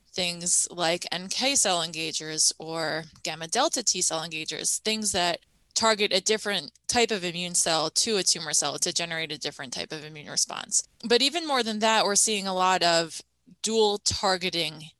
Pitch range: 165-210 Hz